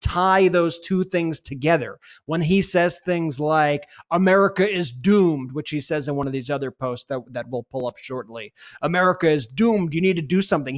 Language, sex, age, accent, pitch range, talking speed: English, male, 30-49, American, 140-170 Hz, 200 wpm